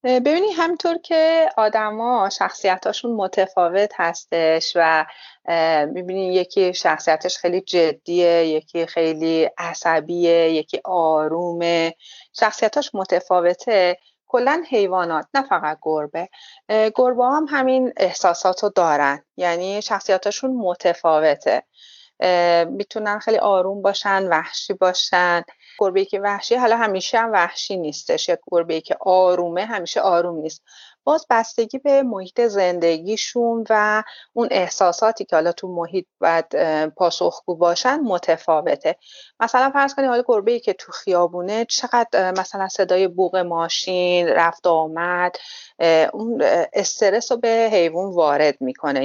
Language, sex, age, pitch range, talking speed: Persian, female, 30-49, 170-220 Hz, 115 wpm